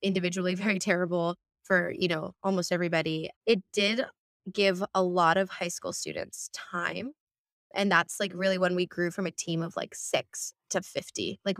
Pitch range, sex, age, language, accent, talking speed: 170-195 Hz, female, 20-39, English, American, 175 wpm